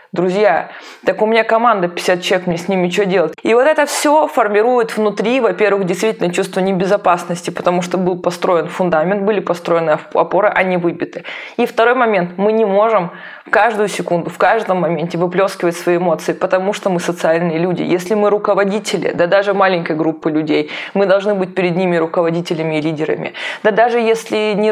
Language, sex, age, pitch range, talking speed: Russian, female, 20-39, 180-220 Hz, 170 wpm